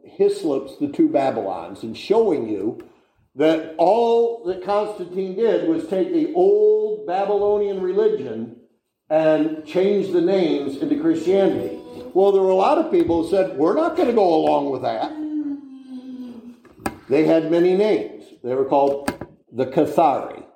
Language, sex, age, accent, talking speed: English, male, 60-79, American, 145 wpm